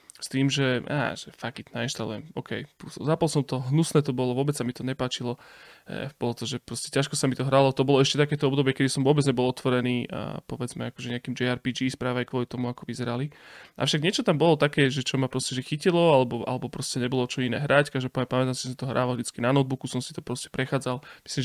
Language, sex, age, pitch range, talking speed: Slovak, male, 20-39, 125-140 Hz, 230 wpm